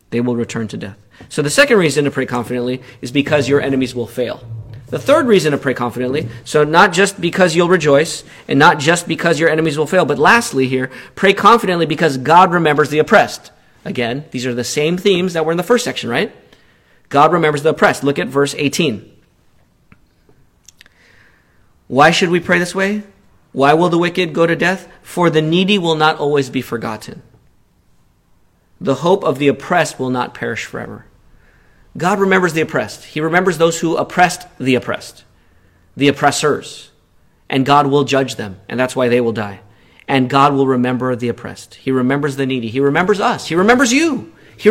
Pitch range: 125-175 Hz